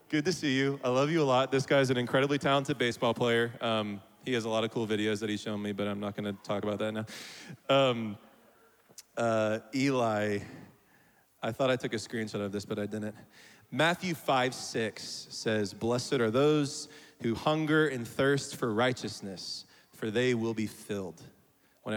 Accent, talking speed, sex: American, 190 wpm, male